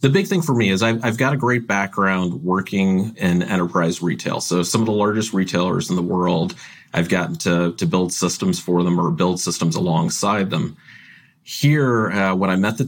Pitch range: 90-110 Hz